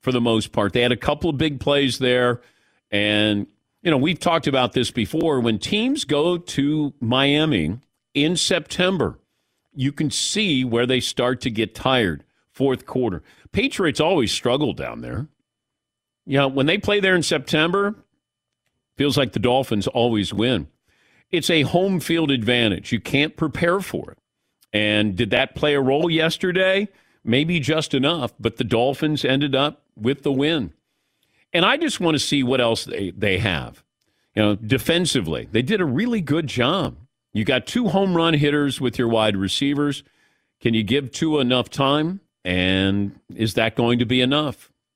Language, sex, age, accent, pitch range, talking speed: English, male, 50-69, American, 120-160 Hz, 170 wpm